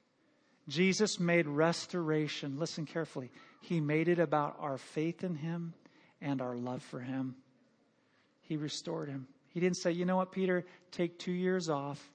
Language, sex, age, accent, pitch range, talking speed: English, male, 40-59, American, 160-195 Hz, 160 wpm